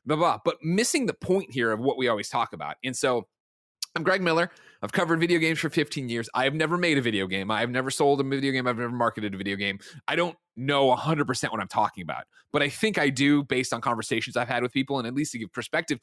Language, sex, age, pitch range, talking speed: English, male, 30-49, 115-150 Hz, 265 wpm